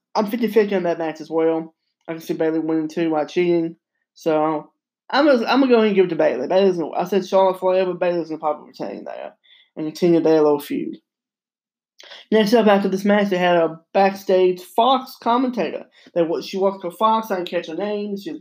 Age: 20-39